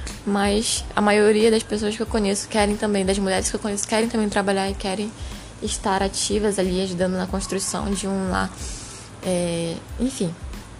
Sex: female